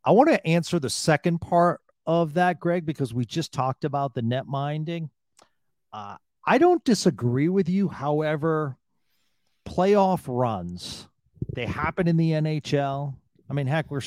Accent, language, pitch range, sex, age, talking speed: American, English, 130-165 Hz, male, 40-59, 155 wpm